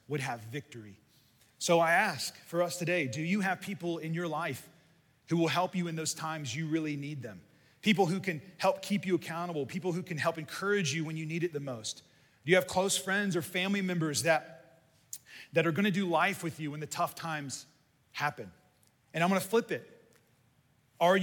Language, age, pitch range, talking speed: English, 30-49, 135-180 Hz, 205 wpm